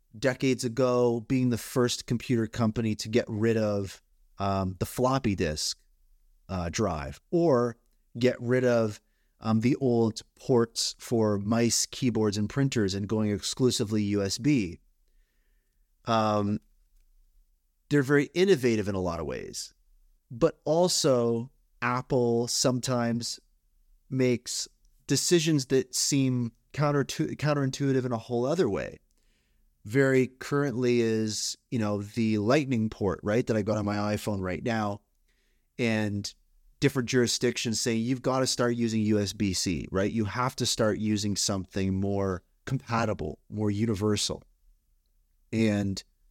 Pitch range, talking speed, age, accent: 100-125 Hz, 125 wpm, 30-49, American